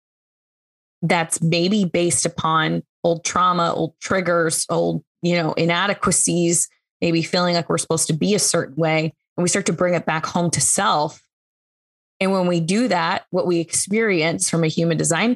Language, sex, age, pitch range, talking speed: English, female, 20-39, 160-185 Hz, 170 wpm